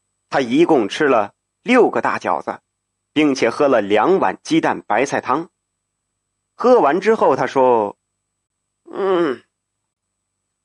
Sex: male